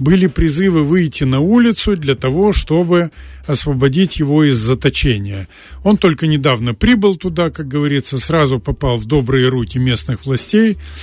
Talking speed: 140 wpm